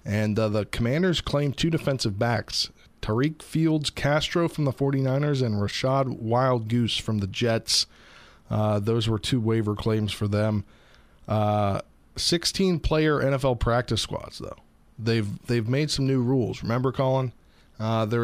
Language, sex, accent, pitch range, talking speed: English, male, American, 110-135 Hz, 150 wpm